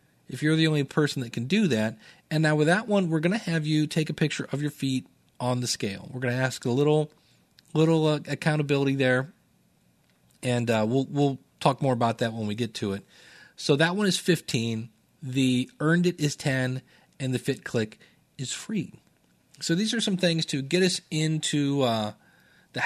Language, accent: English, American